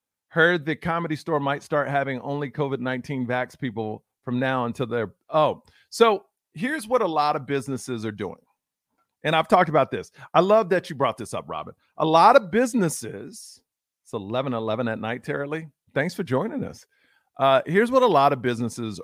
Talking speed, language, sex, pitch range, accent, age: 185 wpm, English, male, 130-190 Hz, American, 40-59